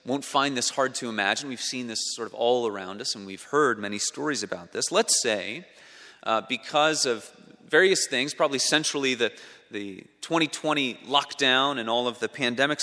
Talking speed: 215 wpm